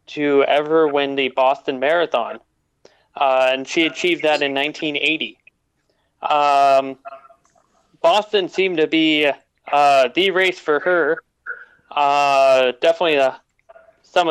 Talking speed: 115 wpm